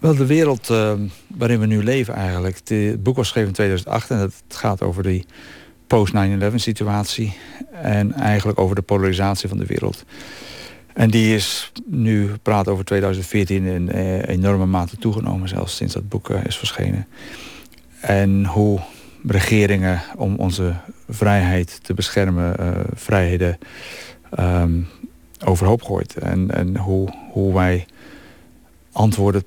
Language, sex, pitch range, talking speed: Dutch, male, 90-110 Hz, 140 wpm